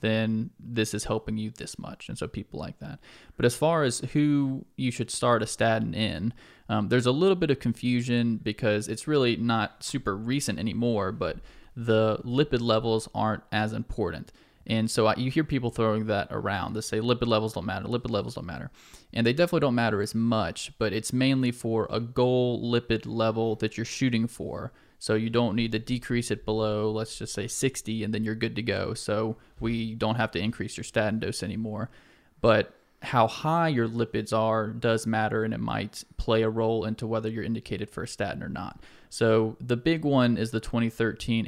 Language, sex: English, male